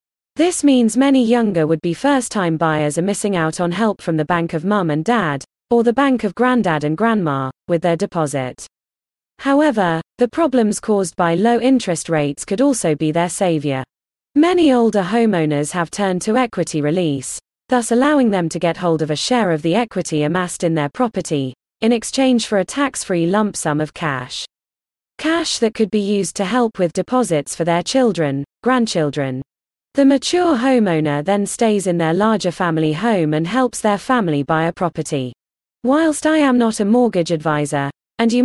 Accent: British